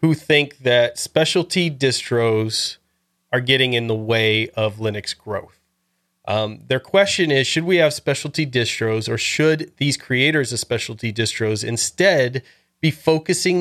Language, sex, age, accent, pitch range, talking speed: English, male, 30-49, American, 120-150 Hz, 140 wpm